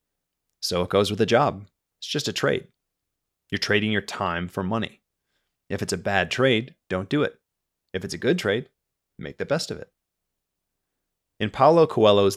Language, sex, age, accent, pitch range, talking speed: English, male, 30-49, American, 90-115 Hz, 180 wpm